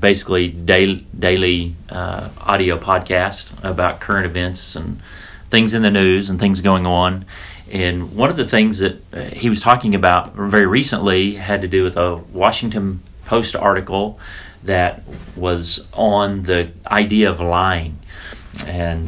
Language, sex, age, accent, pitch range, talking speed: English, male, 40-59, American, 90-100 Hz, 145 wpm